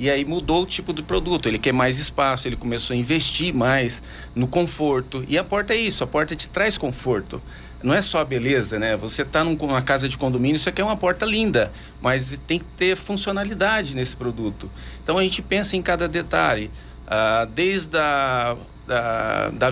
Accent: Brazilian